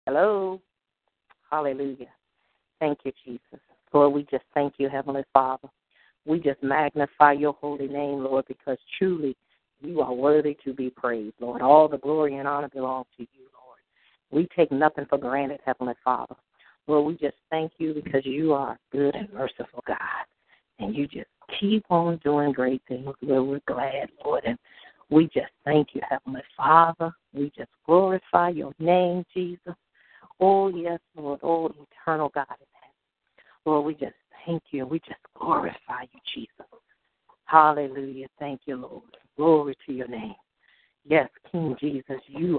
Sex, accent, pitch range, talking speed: female, American, 135-165 Hz, 155 wpm